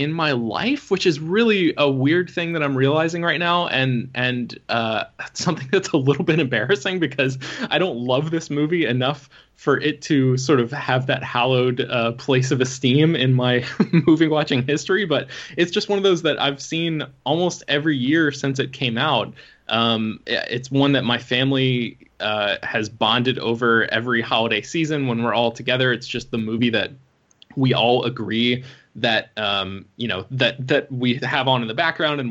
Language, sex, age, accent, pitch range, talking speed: English, male, 20-39, American, 115-145 Hz, 190 wpm